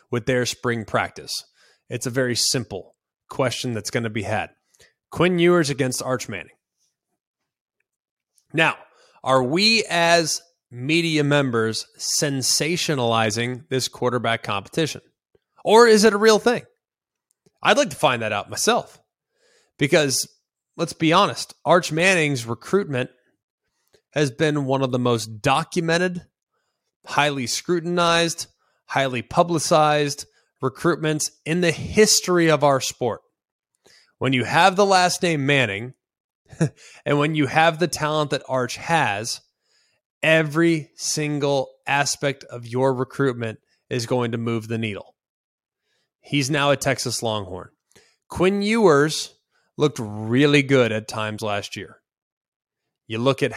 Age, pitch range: 20-39, 120-160 Hz